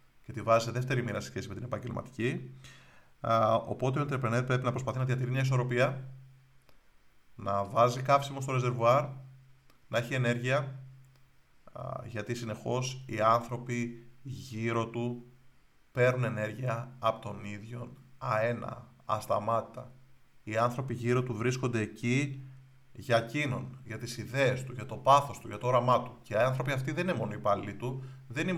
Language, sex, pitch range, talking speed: Greek, male, 115-130 Hz, 155 wpm